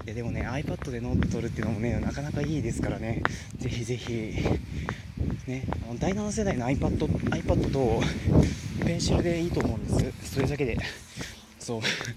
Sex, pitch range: male, 110-145 Hz